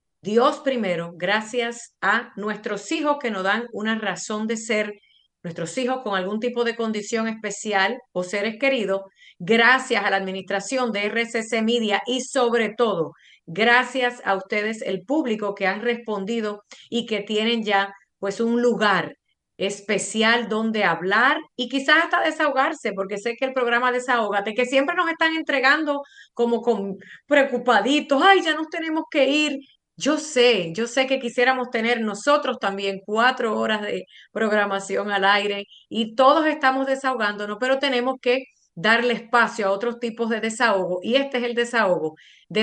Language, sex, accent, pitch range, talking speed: Spanish, female, American, 205-260 Hz, 155 wpm